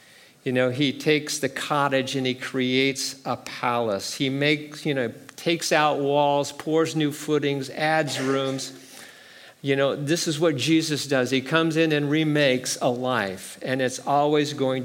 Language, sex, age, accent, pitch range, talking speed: English, male, 50-69, American, 130-160 Hz, 165 wpm